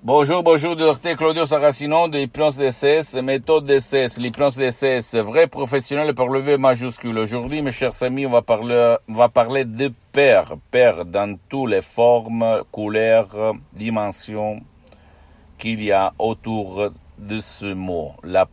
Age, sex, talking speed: 60-79, male, 155 wpm